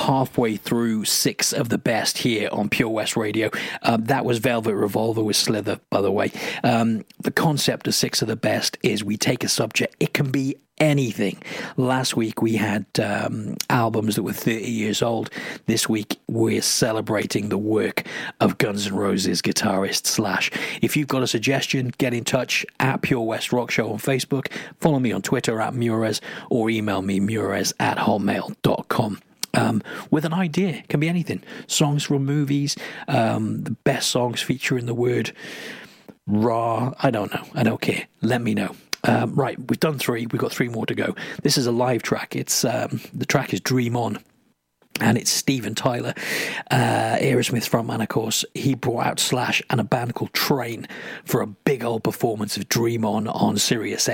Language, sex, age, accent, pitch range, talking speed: English, male, 40-59, British, 110-140 Hz, 185 wpm